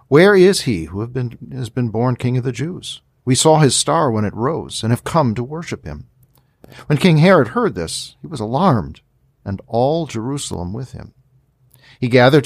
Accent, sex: American, male